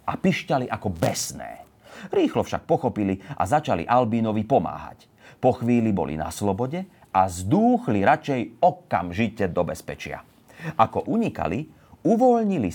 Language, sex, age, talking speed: Slovak, male, 40-59, 120 wpm